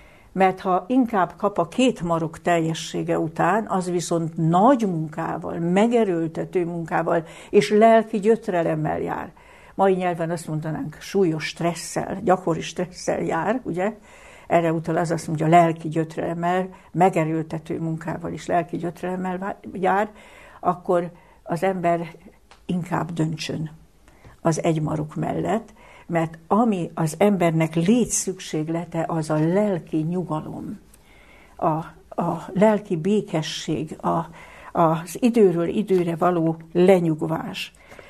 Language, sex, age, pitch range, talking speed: Hungarian, female, 60-79, 165-195 Hz, 110 wpm